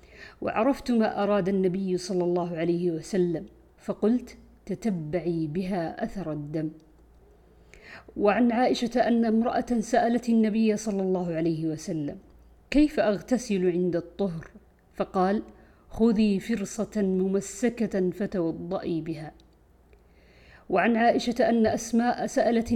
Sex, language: female, Arabic